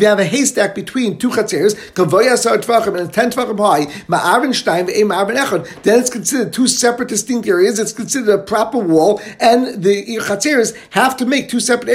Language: English